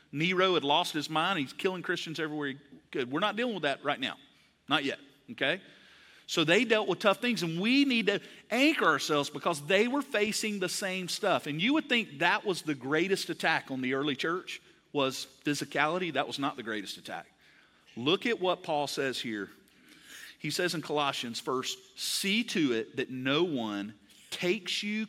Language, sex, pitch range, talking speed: English, male, 130-190 Hz, 190 wpm